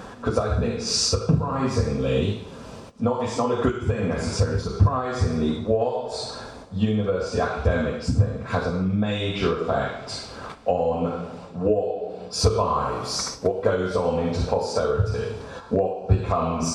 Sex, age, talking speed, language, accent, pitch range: male, 40-59, 110 wpm, Russian, British, 90-110 Hz